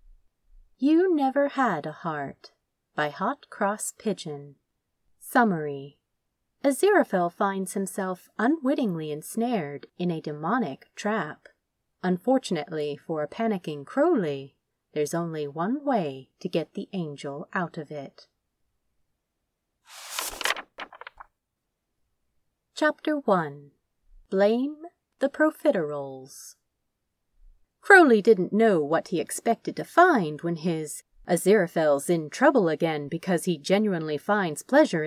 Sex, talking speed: female, 100 wpm